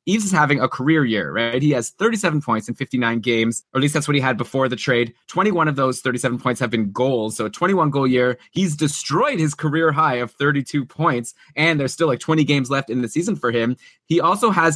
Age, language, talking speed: 20-39, English, 245 wpm